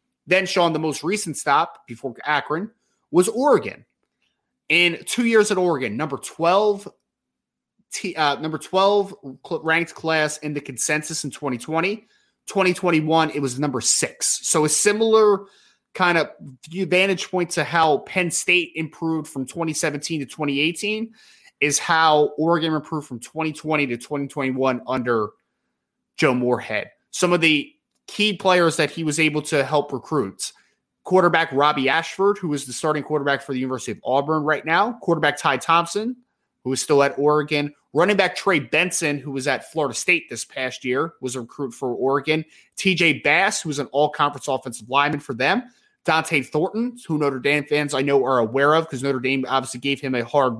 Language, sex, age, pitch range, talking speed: English, male, 20-39, 140-170 Hz, 165 wpm